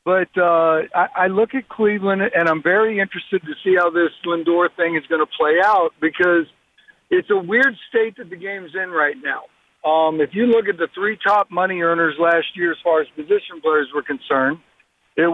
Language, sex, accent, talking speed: English, male, American, 205 wpm